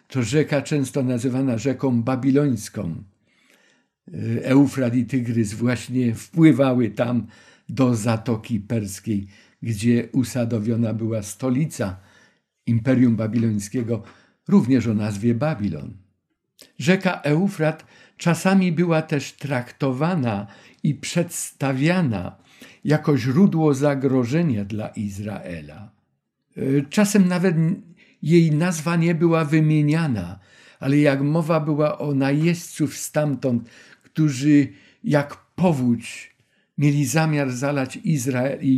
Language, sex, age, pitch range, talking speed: Polish, male, 50-69, 115-150 Hz, 95 wpm